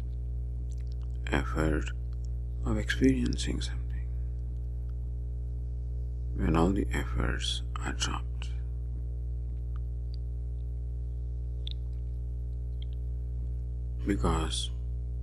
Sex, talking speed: male, 45 wpm